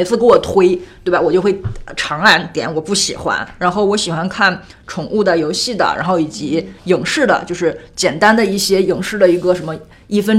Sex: female